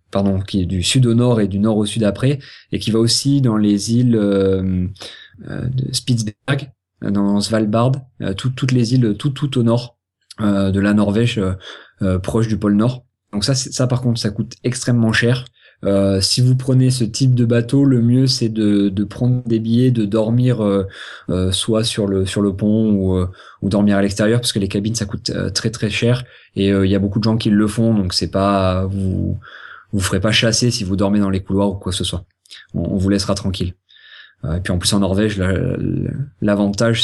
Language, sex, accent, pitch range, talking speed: French, male, French, 100-120 Hz, 225 wpm